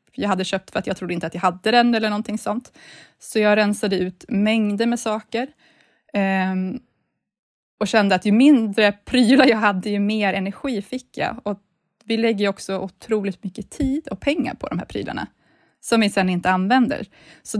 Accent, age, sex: native, 20-39, female